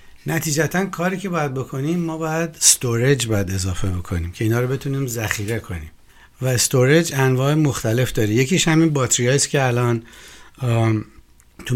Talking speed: 150 wpm